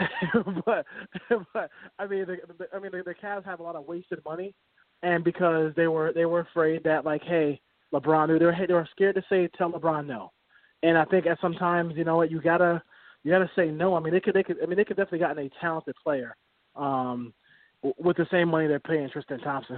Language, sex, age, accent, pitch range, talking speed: English, male, 20-39, American, 150-180 Hz, 235 wpm